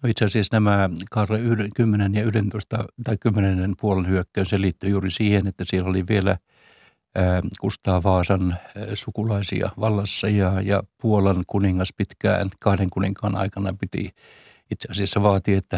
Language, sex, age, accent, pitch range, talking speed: Finnish, male, 60-79, native, 95-110 Hz, 150 wpm